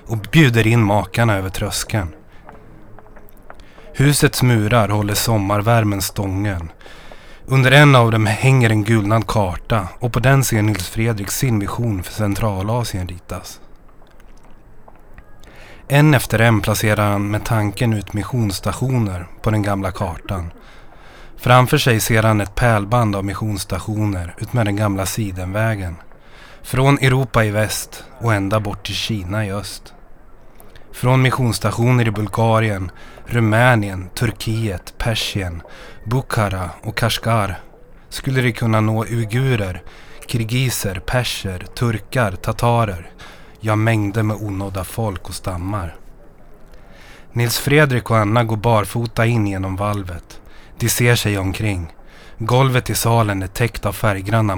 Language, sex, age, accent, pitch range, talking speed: Swedish, male, 30-49, native, 100-115 Hz, 125 wpm